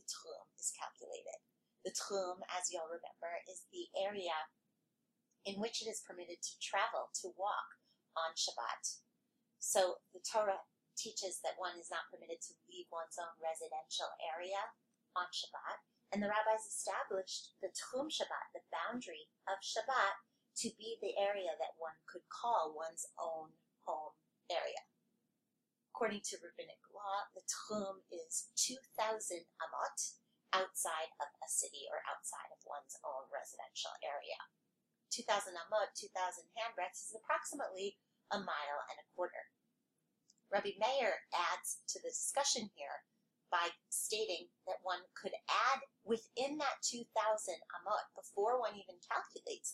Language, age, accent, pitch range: English, 30-49, American, 185-235 Hz